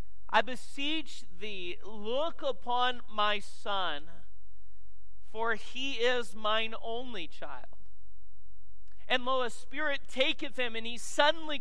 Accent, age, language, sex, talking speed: American, 40-59, English, male, 115 wpm